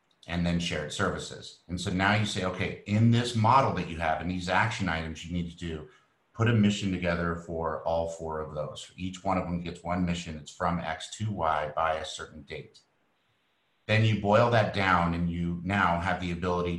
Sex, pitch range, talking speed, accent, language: male, 85-100 Hz, 215 wpm, American, English